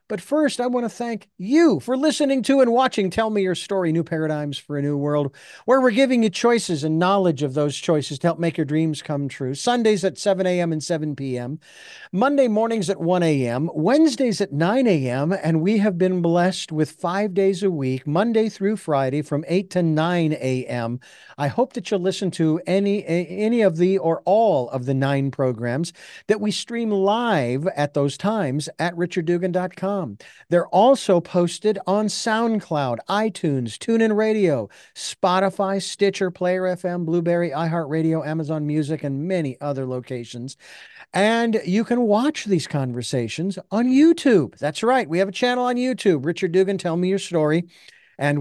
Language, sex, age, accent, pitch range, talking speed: English, male, 50-69, American, 150-200 Hz, 175 wpm